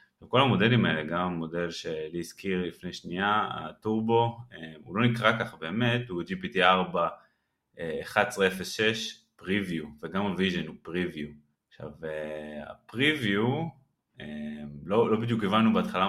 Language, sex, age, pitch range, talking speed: Hebrew, male, 20-39, 85-115 Hz, 105 wpm